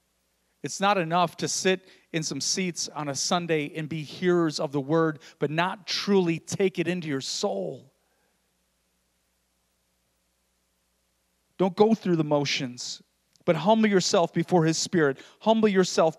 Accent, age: American, 30-49